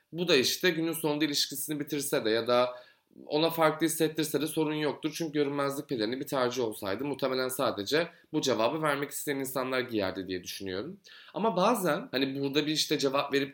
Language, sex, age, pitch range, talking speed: Turkish, male, 30-49, 120-180 Hz, 175 wpm